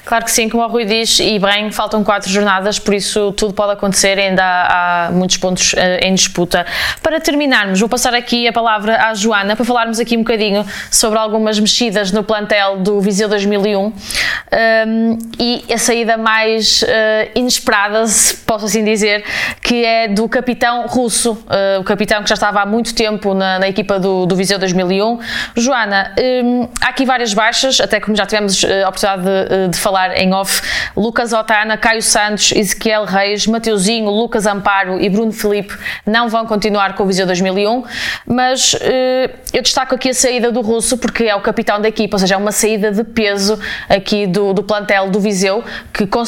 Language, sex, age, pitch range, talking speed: Portuguese, female, 20-39, 200-230 Hz, 180 wpm